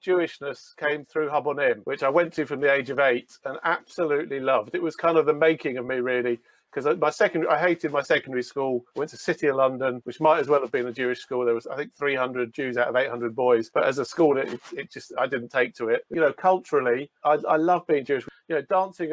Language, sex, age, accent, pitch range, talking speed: English, male, 40-59, British, 130-160 Hz, 255 wpm